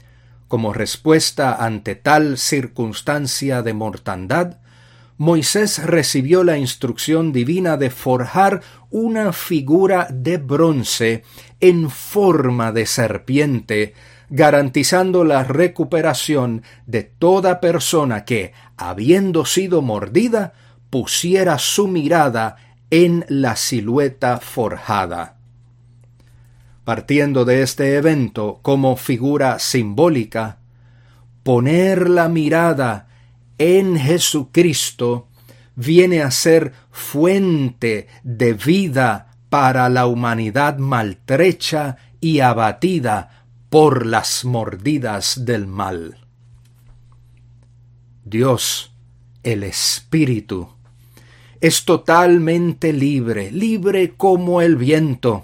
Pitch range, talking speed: 120-160 Hz, 85 wpm